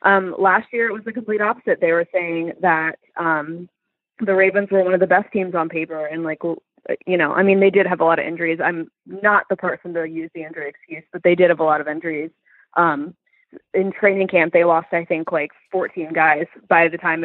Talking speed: 235 wpm